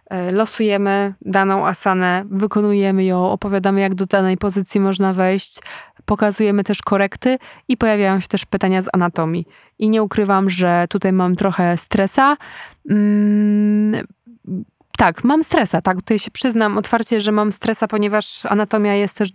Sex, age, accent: female, 20-39, native